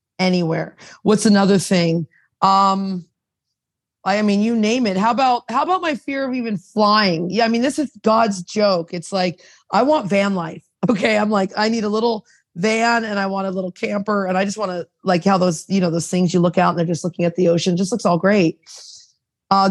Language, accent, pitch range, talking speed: English, American, 180-215 Hz, 220 wpm